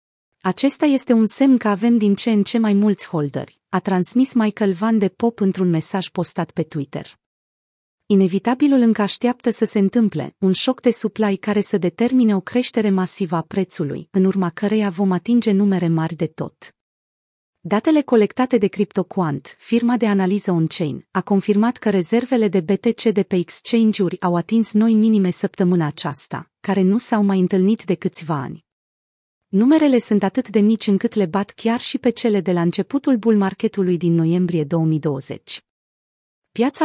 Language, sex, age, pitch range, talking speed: Romanian, female, 30-49, 180-230 Hz, 170 wpm